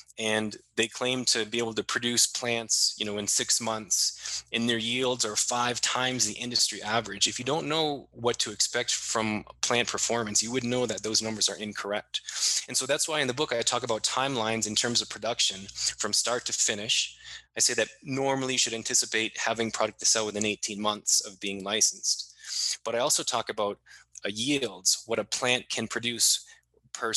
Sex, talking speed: male, 200 wpm